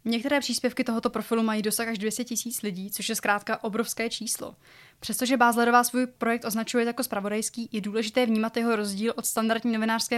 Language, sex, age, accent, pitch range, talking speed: Czech, female, 20-39, native, 215-240 Hz, 175 wpm